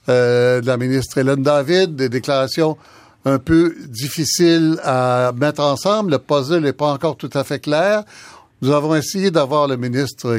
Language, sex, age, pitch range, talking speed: French, male, 60-79, 120-150 Hz, 160 wpm